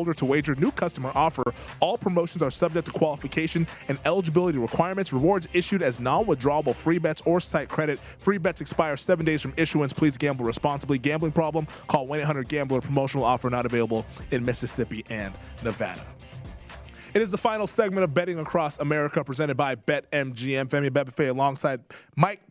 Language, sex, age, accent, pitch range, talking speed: English, male, 20-39, American, 135-170 Hz, 165 wpm